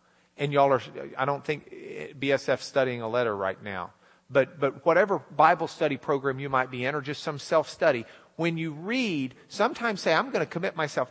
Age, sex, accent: 50-69, male, American